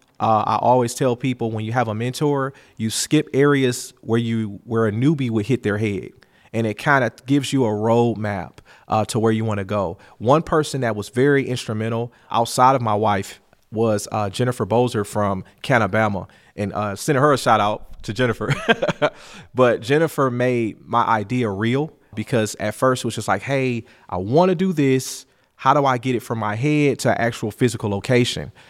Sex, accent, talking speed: male, American, 200 wpm